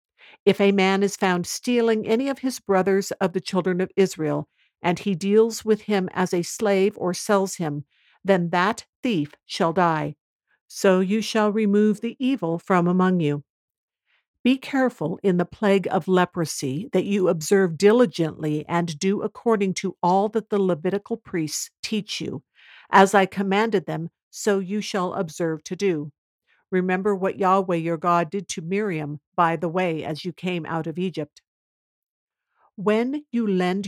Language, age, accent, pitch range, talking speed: English, 50-69, American, 170-205 Hz, 165 wpm